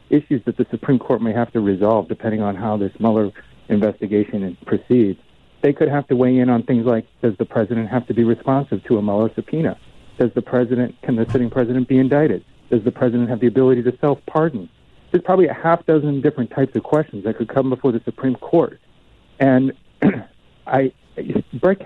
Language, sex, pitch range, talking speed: English, male, 110-140 Hz, 200 wpm